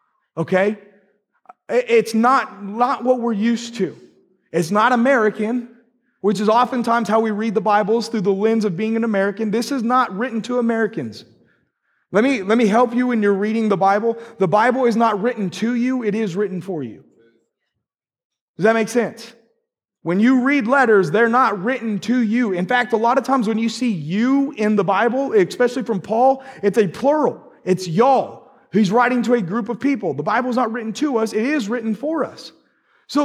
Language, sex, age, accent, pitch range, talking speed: English, male, 30-49, American, 205-245 Hz, 195 wpm